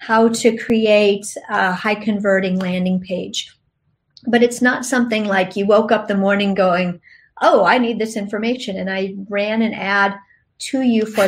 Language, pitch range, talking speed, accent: English, 195-225 Hz, 170 wpm, American